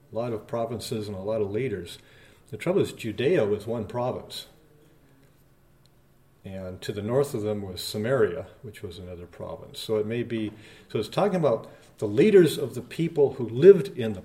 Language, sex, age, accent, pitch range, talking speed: English, male, 50-69, American, 105-130 Hz, 190 wpm